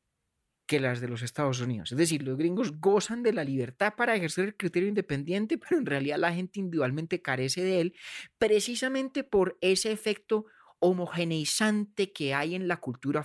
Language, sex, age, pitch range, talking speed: Spanish, male, 30-49, 145-210 Hz, 170 wpm